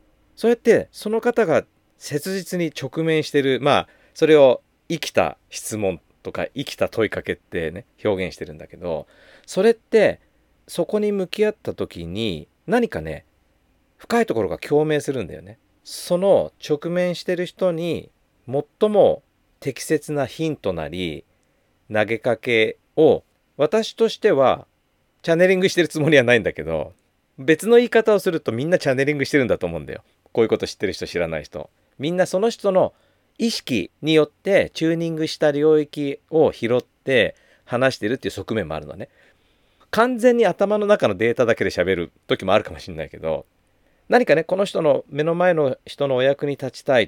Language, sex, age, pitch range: Japanese, male, 40-59, 115-185 Hz